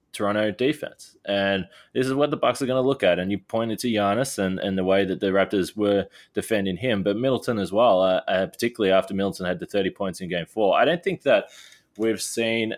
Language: English